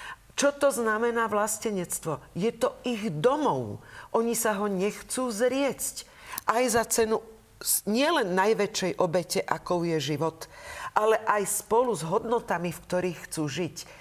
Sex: female